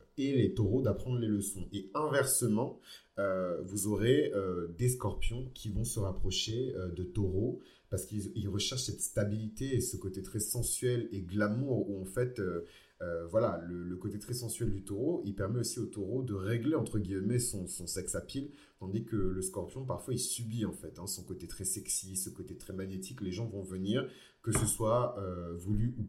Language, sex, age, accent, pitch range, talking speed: French, male, 30-49, French, 95-120 Hz, 205 wpm